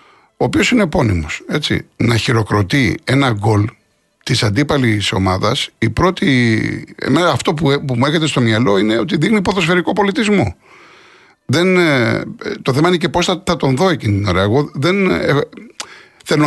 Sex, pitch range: male, 125-185 Hz